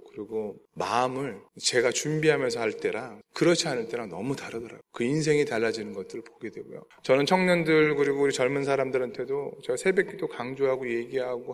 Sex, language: male, Korean